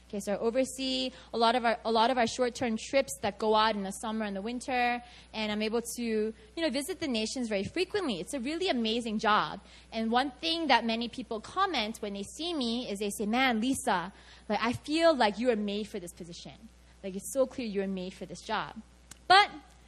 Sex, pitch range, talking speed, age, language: female, 215-310 Hz, 210 wpm, 20-39, English